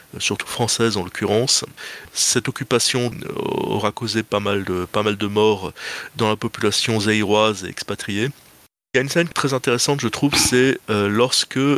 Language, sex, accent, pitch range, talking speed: French, male, French, 110-135 Hz, 170 wpm